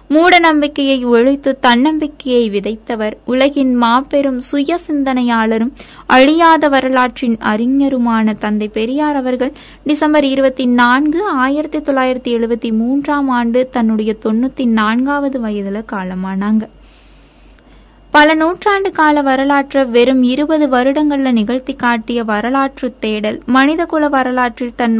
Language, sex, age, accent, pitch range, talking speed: Tamil, female, 20-39, native, 225-285 Hz, 95 wpm